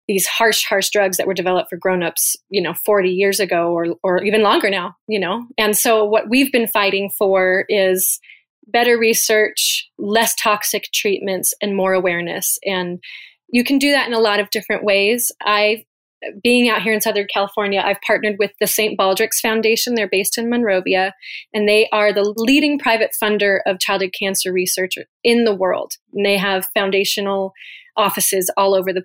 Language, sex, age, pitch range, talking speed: English, female, 30-49, 190-220 Hz, 180 wpm